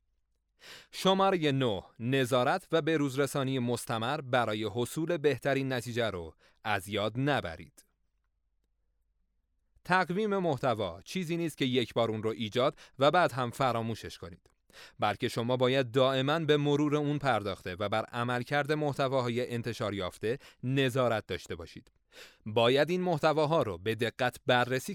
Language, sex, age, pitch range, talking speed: Persian, male, 30-49, 110-150 Hz, 125 wpm